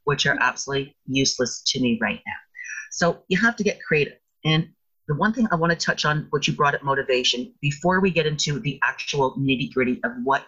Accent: American